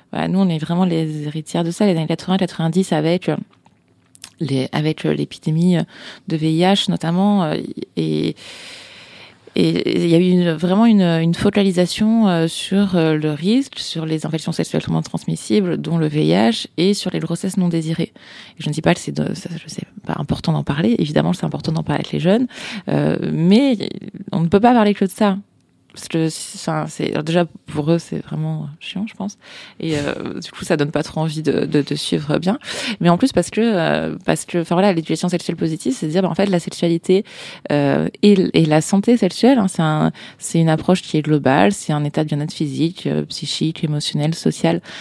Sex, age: female, 20-39